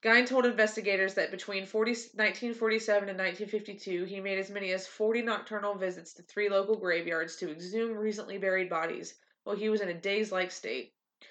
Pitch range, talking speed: 190-220 Hz, 175 wpm